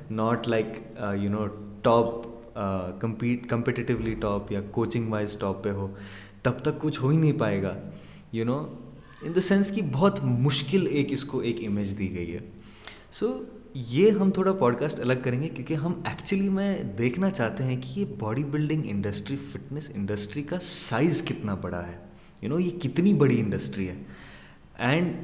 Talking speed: 180 wpm